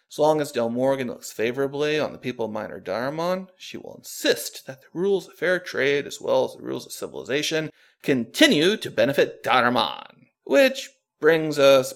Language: English